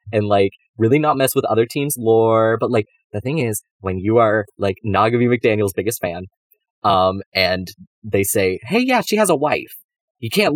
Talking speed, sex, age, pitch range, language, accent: 195 wpm, male, 20-39, 100-165 Hz, English, American